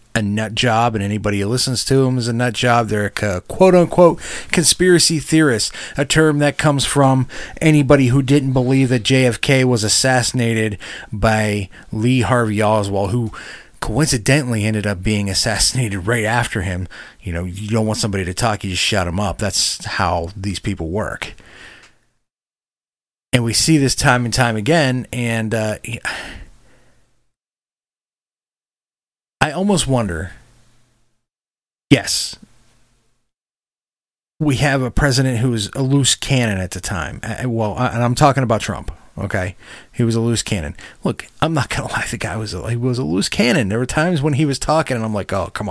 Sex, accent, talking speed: male, American, 165 wpm